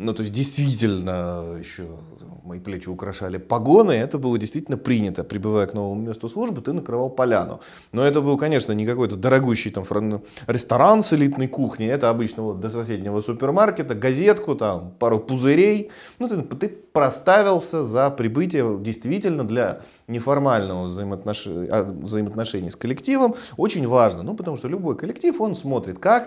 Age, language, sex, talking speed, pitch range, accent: 30-49, Russian, male, 150 wpm, 105-150 Hz, native